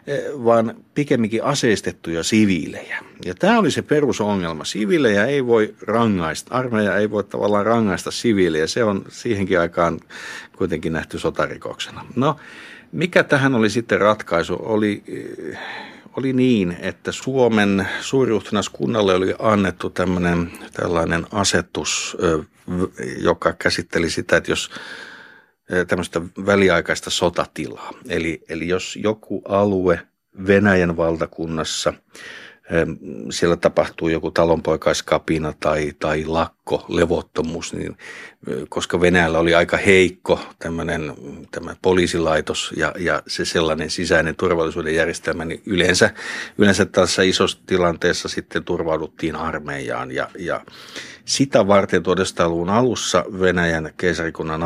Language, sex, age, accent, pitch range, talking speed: Finnish, male, 50-69, native, 80-105 Hz, 110 wpm